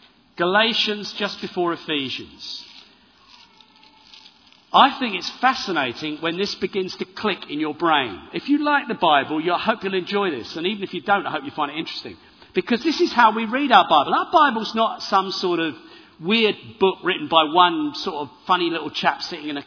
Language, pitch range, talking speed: English, 180-255 Hz, 200 wpm